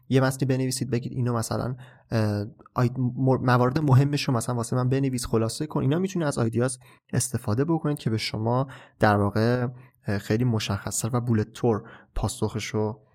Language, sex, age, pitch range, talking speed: Persian, male, 20-39, 115-140 Hz, 145 wpm